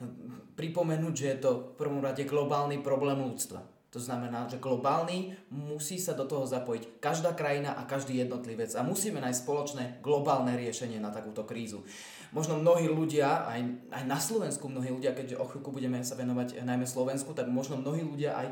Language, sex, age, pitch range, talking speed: Slovak, male, 20-39, 125-155 Hz, 175 wpm